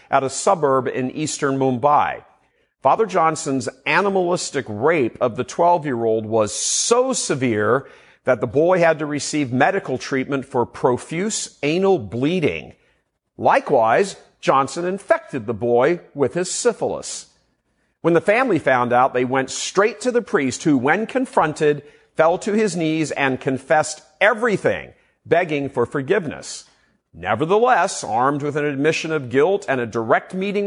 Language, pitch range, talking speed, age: English, 130-175 Hz, 140 wpm, 50-69